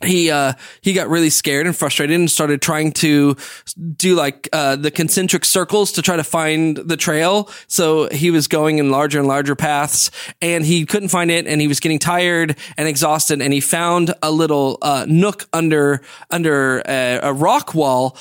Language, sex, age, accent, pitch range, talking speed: English, male, 20-39, American, 150-190 Hz, 190 wpm